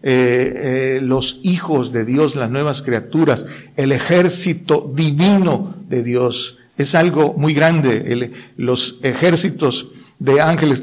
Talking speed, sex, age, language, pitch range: 120 wpm, male, 50-69, Spanish, 130-160 Hz